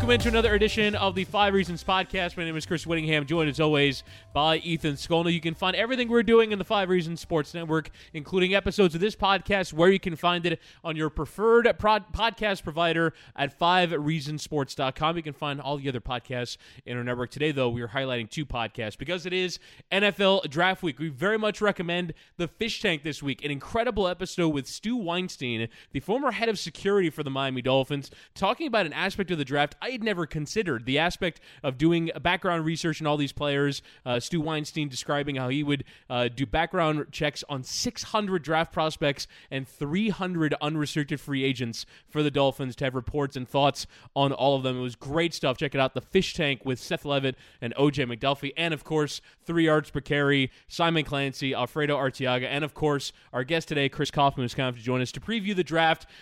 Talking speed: 210 wpm